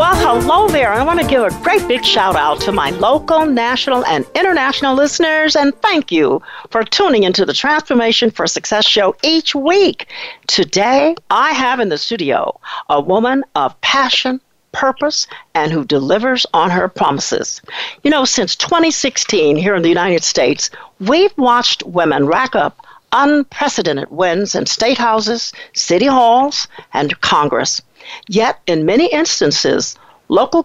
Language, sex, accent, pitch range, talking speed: English, female, American, 195-315 Hz, 150 wpm